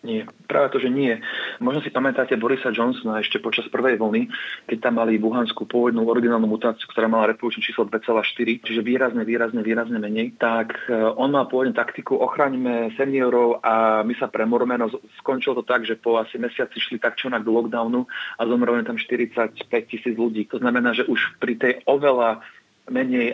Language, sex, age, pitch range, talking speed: Slovak, male, 40-59, 115-125 Hz, 185 wpm